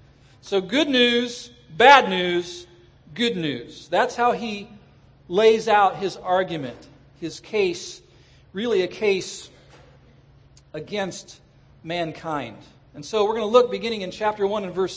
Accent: American